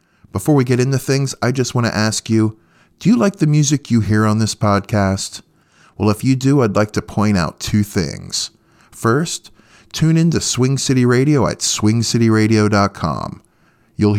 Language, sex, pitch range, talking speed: English, male, 100-125 Hz, 180 wpm